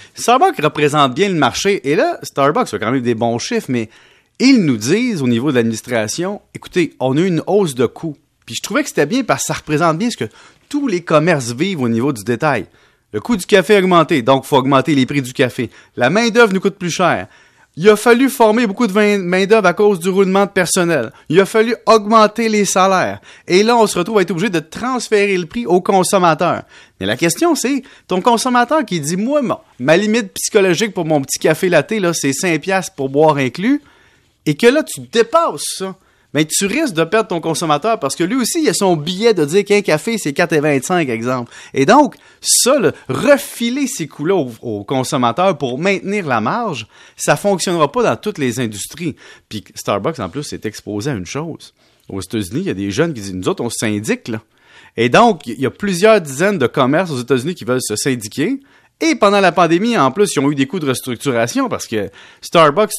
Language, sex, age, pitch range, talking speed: French, male, 30-49, 140-215 Hz, 230 wpm